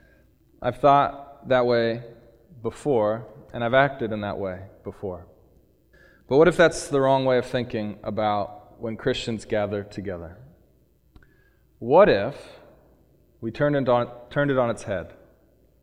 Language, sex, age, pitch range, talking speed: English, male, 30-49, 95-125 Hz, 140 wpm